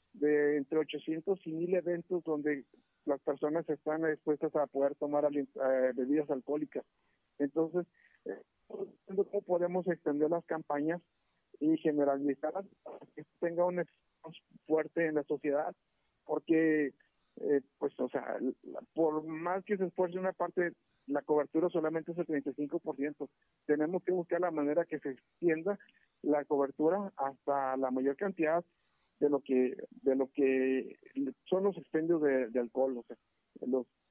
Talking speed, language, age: 140 wpm, Spanish, 50-69